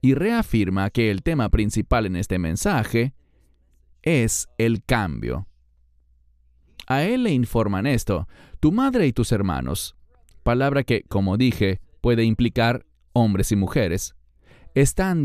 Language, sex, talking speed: English, male, 125 wpm